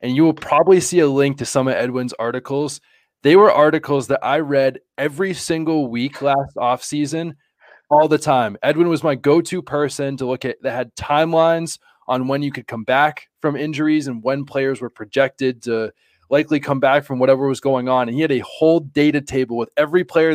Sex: male